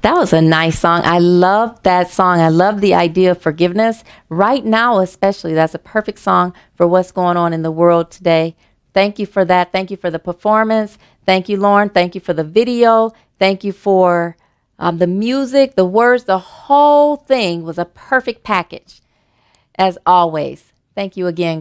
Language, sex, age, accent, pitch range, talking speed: English, female, 40-59, American, 175-230 Hz, 185 wpm